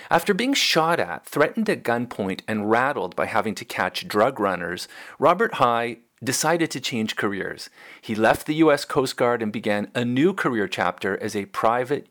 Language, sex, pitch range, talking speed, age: English, male, 105-145 Hz, 180 wpm, 40-59